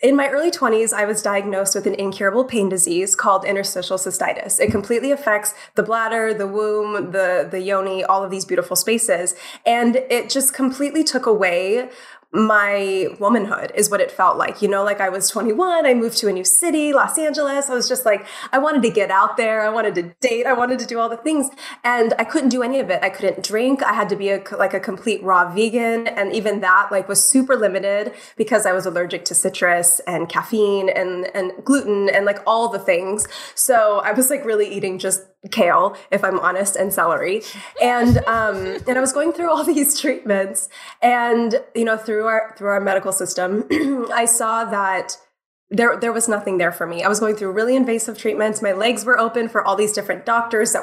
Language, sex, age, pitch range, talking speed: English, female, 20-39, 195-250 Hz, 210 wpm